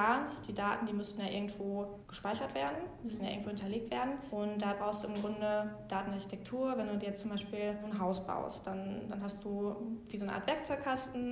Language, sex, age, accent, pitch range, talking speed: German, female, 20-39, German, 205-225 Hz, 200 wpm